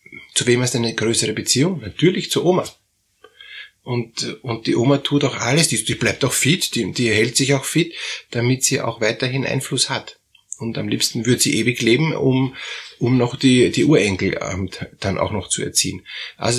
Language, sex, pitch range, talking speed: German, male, 110-140 Hz, 190 wpm